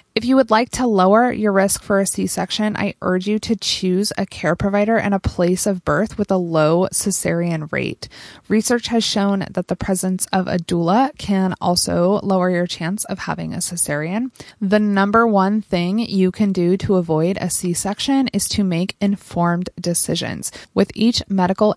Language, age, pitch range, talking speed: English, 20-39, 180-210 Hz, 180 wpm